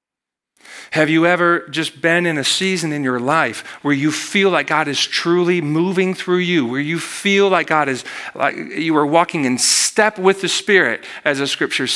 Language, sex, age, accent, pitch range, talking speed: English, male, 40-59, American, 125-175 Hz, 195 wpm